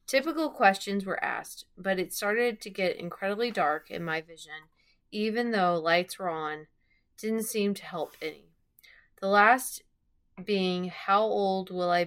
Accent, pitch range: American, 170-210 Hz